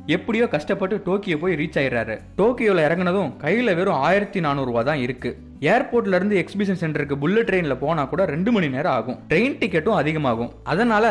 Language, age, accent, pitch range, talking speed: Tamil, 20-39, native, 150-205 Hz, 110 wpm